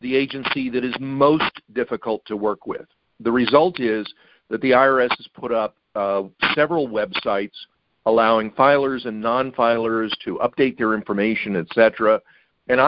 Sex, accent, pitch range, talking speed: male, American, 110-130 Hz, 150 wpm